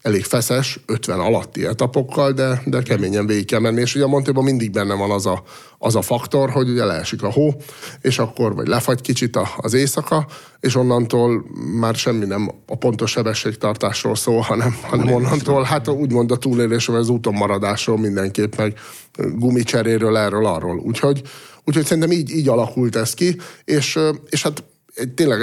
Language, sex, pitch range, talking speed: English, male, 115-135 Hz, 170 wpm